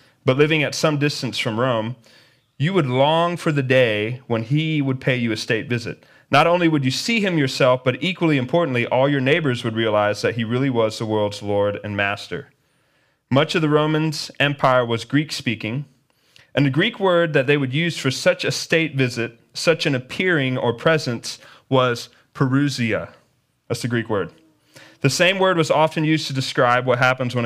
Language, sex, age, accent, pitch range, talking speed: English, male, 30-49, American, 120-155 Hz, 190 wpm